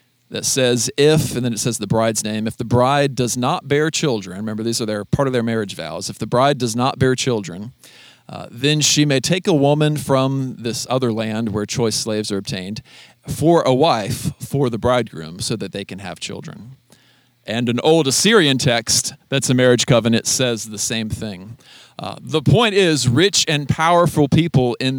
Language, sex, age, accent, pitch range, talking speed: English, male, 40-59, American, 115-145 Hz, 195 wpm